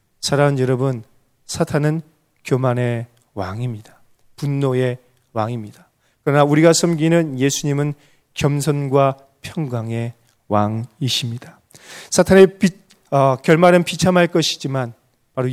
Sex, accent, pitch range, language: male, native, 125-145 Hz, Korean